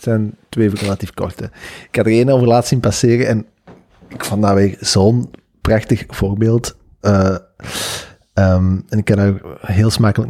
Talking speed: 170 wpm